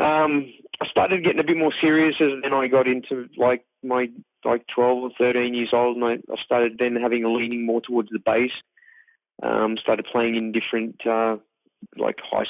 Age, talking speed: 20-39, 195 wpm